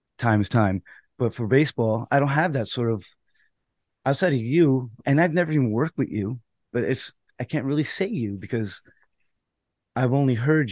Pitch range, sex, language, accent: 105-125 Hz, male, English, American